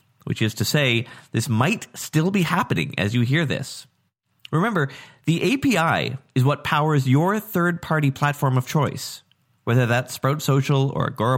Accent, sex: American, male